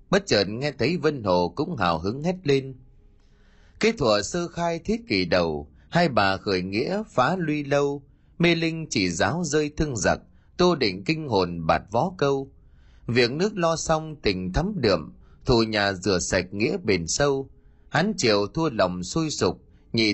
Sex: male